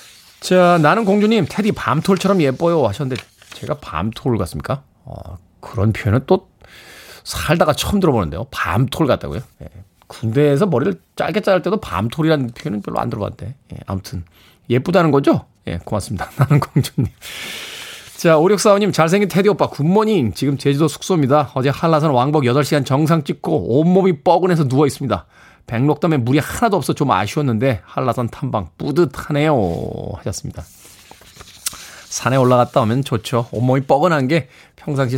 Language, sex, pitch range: Korean, male, 115-170 Hz